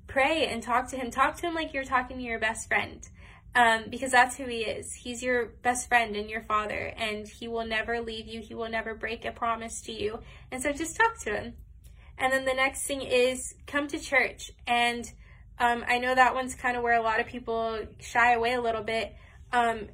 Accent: American